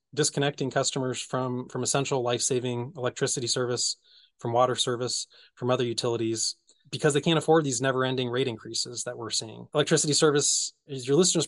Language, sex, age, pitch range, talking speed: English, male, 20-39, 120-145 Hz, 155 wpm